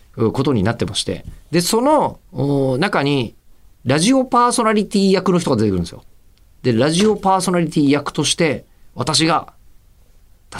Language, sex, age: Japanese, male, 40-59